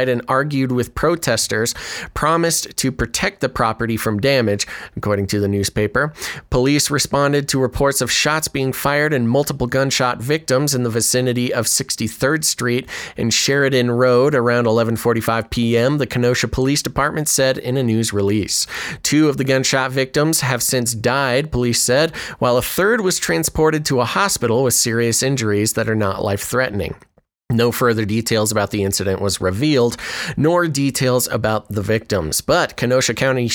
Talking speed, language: 160 wpm, English